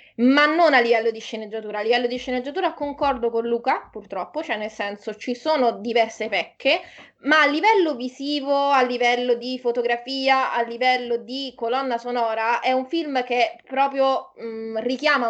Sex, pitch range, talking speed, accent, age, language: female, 230-275 Hz, 160 wpm, native, 20-39, Italian